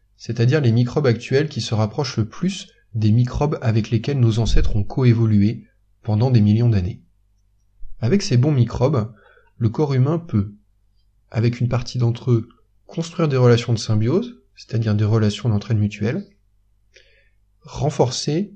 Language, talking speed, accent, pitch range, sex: French, 145 wpm, French, 105-135 Hz, male